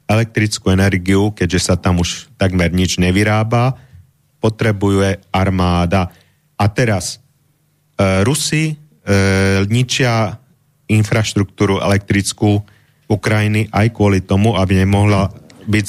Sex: male